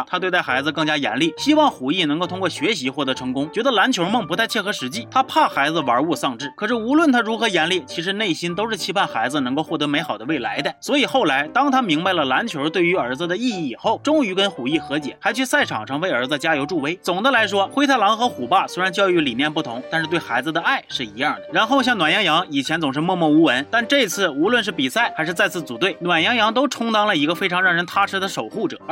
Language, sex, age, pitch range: Chinese, male, 30-49, 165-250 Hz